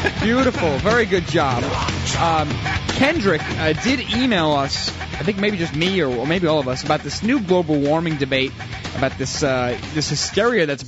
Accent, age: American, 30-49